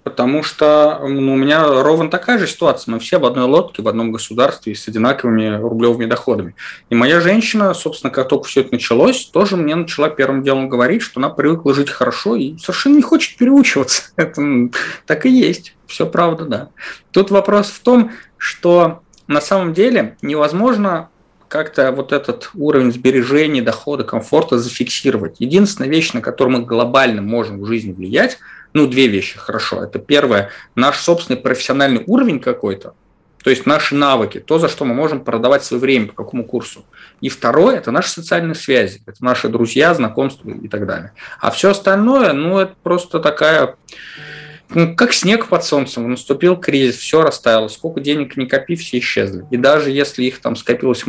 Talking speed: 175 wpm